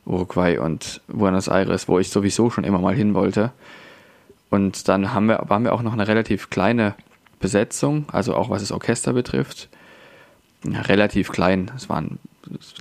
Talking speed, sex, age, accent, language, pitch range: 160 wpm, male, 20-39, German, German, 95-110 Hz